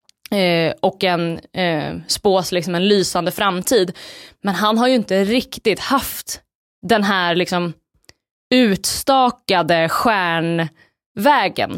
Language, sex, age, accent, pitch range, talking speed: Swedish, female, 20-39, native, 170-200 Hz, 100 wpm